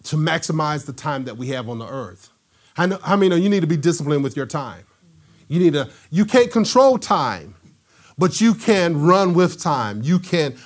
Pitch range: 150-190 Hz